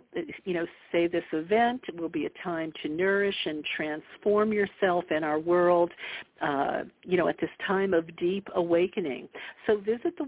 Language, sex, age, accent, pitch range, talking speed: English, female, 50-69, American, 165-195 Hz, 170 wpm